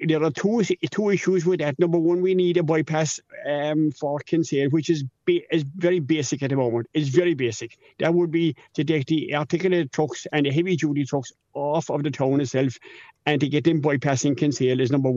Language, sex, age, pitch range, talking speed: English, male, 60-79, 135-165 Hz, 210 wpm